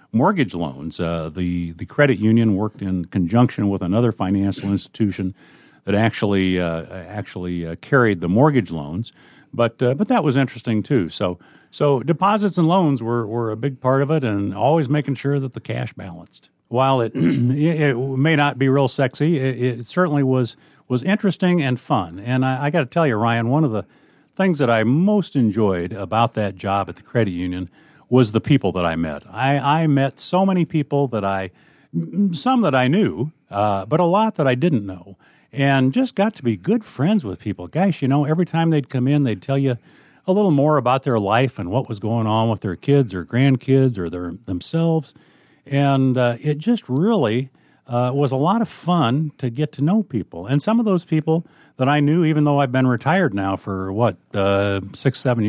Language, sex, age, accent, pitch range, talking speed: English, male, 50-69, American, 105-150 Hz, 205 wpm